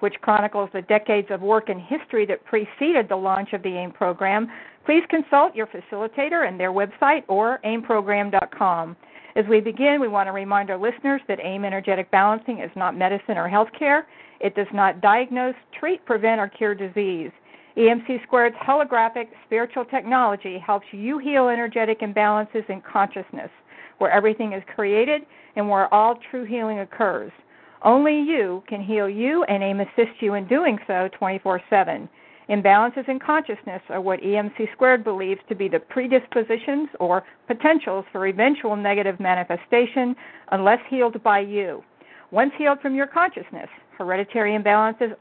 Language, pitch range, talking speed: English, 200-255 Hz, 155 wpm